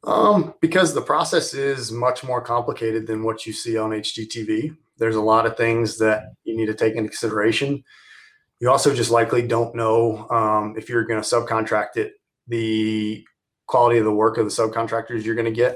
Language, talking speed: English, 195 wpm